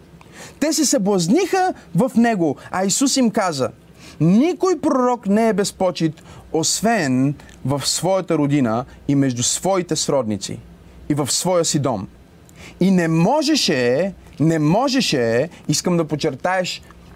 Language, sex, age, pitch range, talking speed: Bulgarian, male, 30-49, 140-190 Hz, 120 wpm